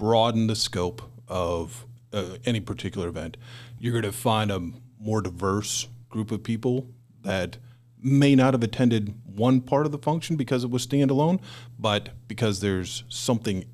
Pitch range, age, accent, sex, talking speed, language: 100-120 Hz, 40-59, American, male, 155 wpm, English